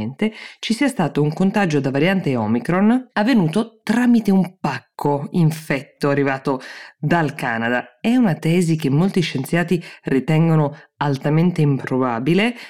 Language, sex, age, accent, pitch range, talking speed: Italian, female, 20-39, native, 135-160 Hz, 120 wpm